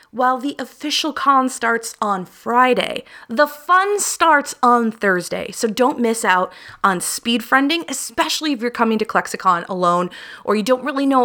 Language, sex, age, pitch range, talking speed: English, female, 20-39, 195-275 Hz, 165 wpm